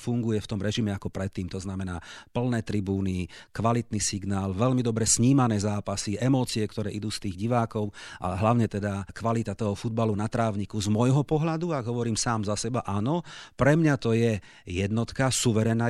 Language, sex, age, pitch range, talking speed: Slovak, male, 40-59, 105-130 Hz, 170 wpm